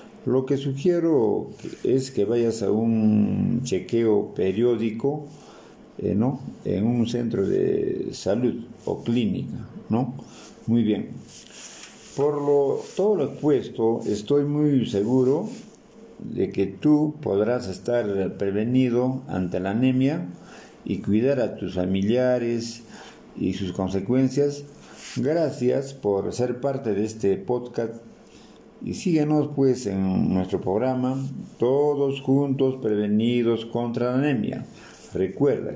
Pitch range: 110-140 Hz